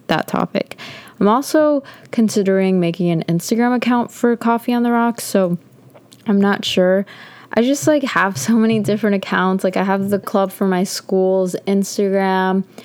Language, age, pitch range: English, 20-39, 180-215 Hz